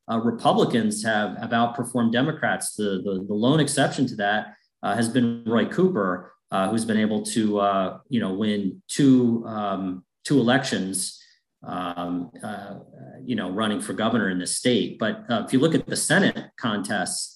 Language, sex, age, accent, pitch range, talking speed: English, male, 40-59, American, 105-125 Hz, 170 wpm